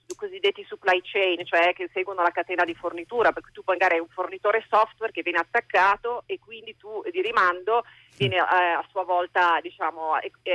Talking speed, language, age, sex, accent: 180 wpm, Italian, 40-59, female, native